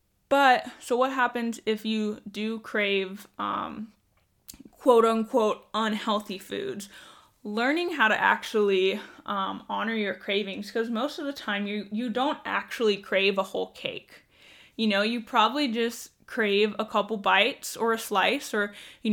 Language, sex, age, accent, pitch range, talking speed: English, female, 10-29, American, 200-235 Hz, 150 wpm